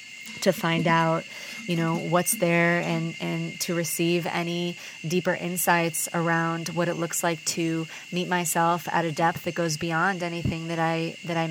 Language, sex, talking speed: English, female, 170 wpm